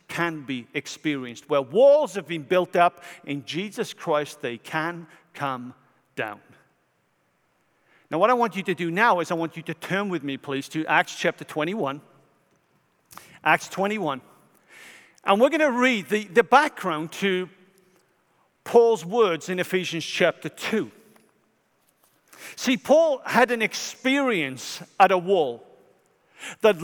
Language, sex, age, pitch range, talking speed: English, male, 50-69, 160-220 Hz, 140 wpm